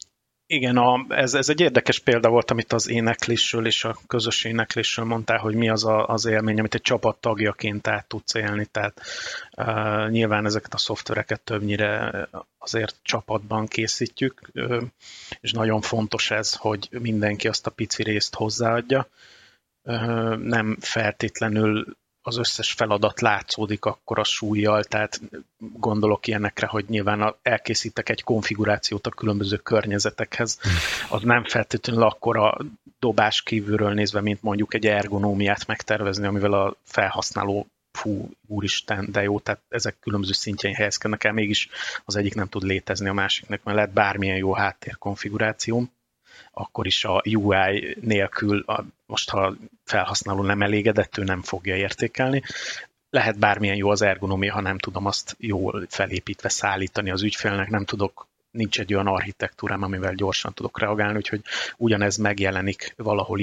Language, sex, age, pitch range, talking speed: Hungarian, male, 30-49, 100-115 Hz, 140 wpm